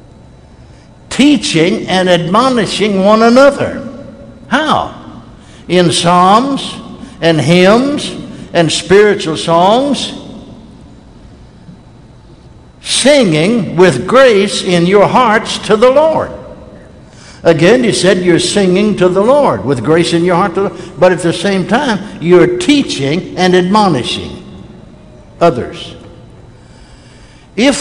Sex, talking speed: male, 100 wpm